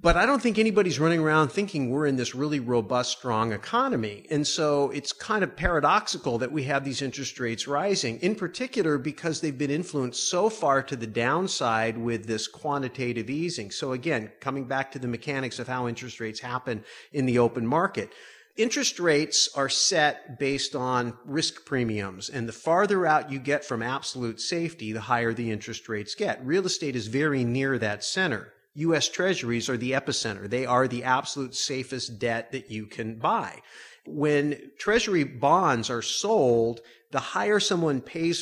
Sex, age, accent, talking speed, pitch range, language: male, 40-59, American, 175 wpm, 120-155 Hz, English